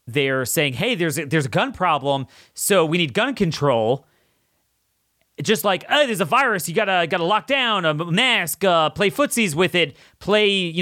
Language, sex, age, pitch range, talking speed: English, male, 30-49, 135-180 Hz, 190 wpm